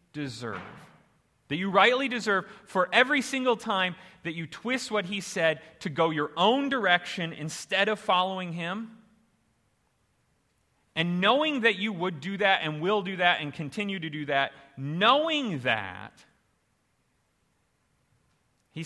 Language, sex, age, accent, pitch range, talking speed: English, male, 30-49, American, 150-210 Hz, 135 wpm